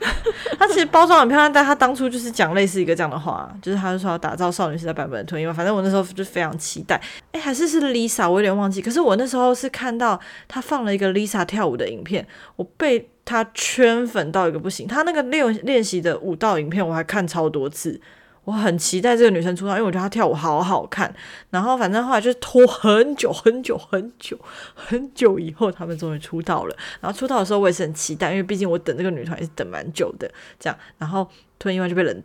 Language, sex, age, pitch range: Chinese, female, 20-39, 175-230 Hz